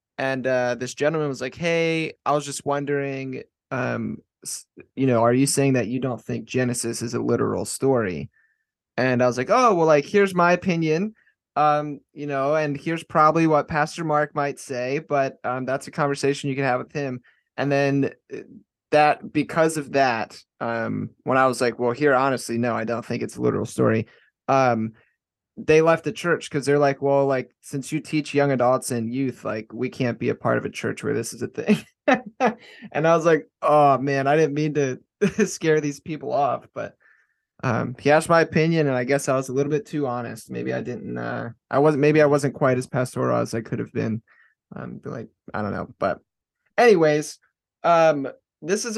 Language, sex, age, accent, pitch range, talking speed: English, male, 20-39, American, 130-155 Hz, 205 wpm